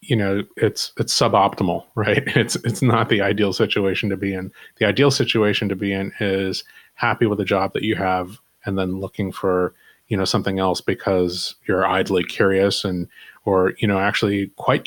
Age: 30-49